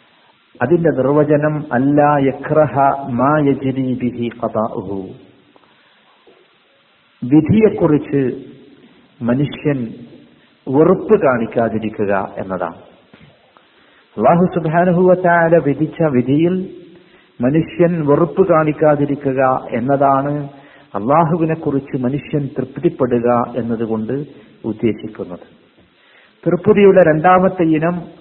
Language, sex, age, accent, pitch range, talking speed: Malayalam, male, 50-69, native, 135-180 Hz, 80 wpm